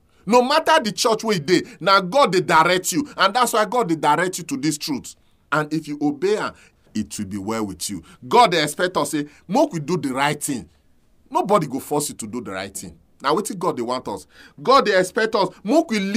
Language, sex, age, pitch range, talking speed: English, male, 40-59, 150-205 Hz, 235 wpm